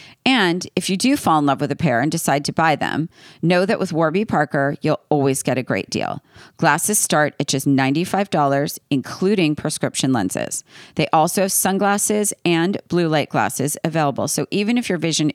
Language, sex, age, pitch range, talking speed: English, female, 40-59, 145-180 Hz, 190 wpm